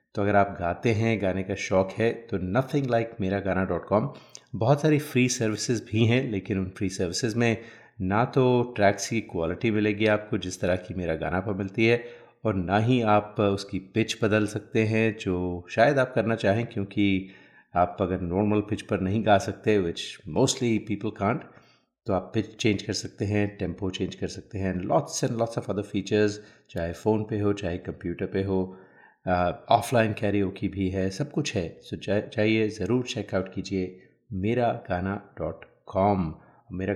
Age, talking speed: 30-49, 180 wpm